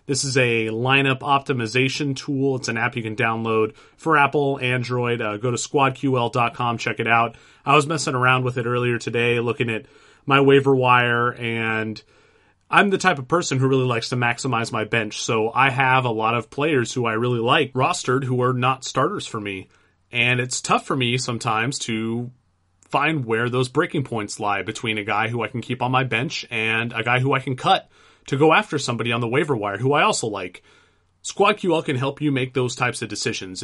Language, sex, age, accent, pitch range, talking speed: English, male, 30-49, American, 115-140 Hz, 210 wpm